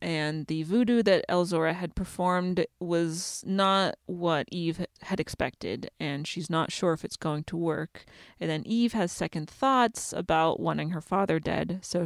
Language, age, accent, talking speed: English, 30-49, American, 170 wpm